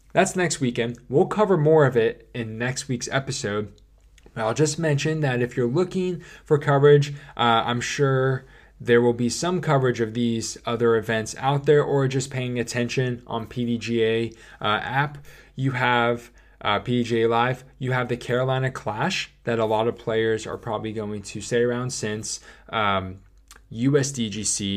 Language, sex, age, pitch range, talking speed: English, male, 20-39, 110-135 Hz, 160 wpm